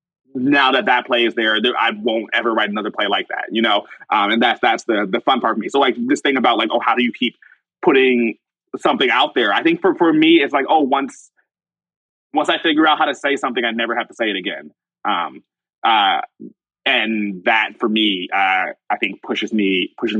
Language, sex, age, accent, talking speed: English, male, 20-39, American, 230 wpm